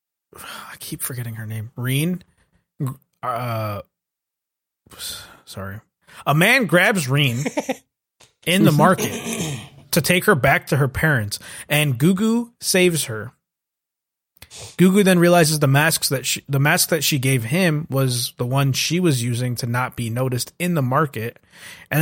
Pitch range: 125-170 Hz